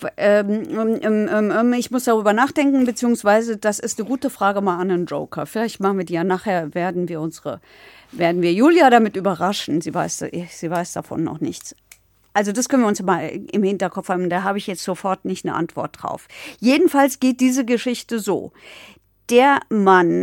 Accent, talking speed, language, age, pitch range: German, 190 wpm, German, 50-69, 180-230 Hz